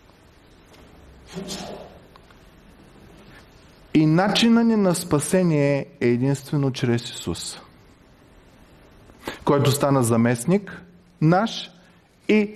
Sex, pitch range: male, 110-150 Hz